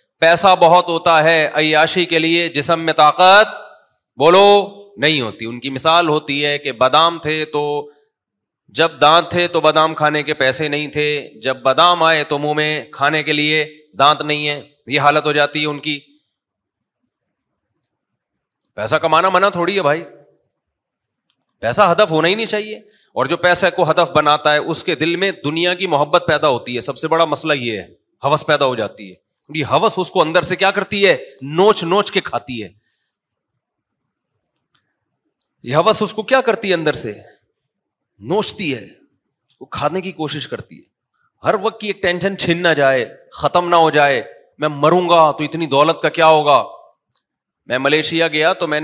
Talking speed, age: 180 wpm, 30-49